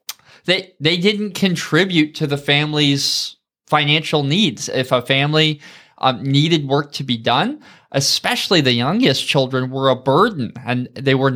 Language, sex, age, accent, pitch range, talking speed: English, male, 20-39, American, 125-170 Hz, 150 wpm